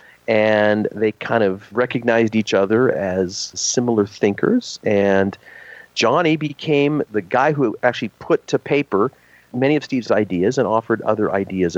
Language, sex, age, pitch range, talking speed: English, male, 40-59, 95-130 Hz, 145 wpm